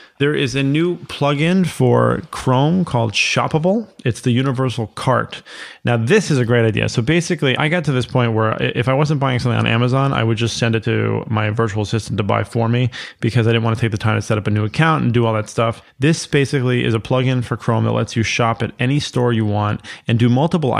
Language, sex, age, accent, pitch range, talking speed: English, male, 30-49, American, 110-130 Hz, 245 wpm